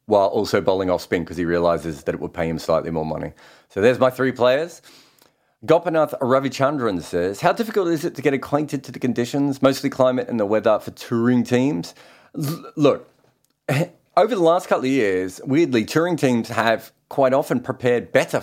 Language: English